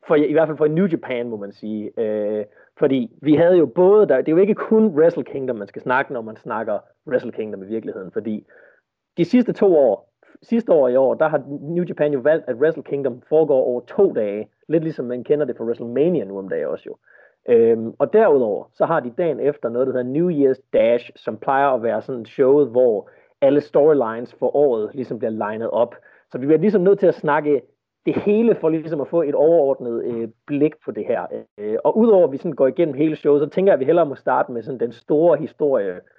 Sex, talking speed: male, 230 wpm